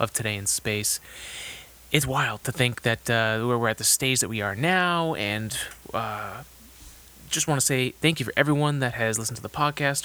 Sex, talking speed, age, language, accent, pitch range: male, 195 wpm, 30-49, English, American, 105-145 Hz